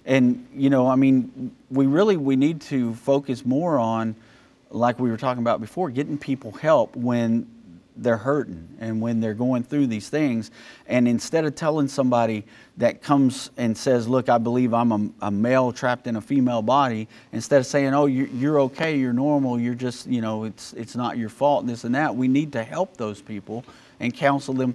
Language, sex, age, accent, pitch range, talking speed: English, male, 40-59, American, 115-140 Hz, 200 wpm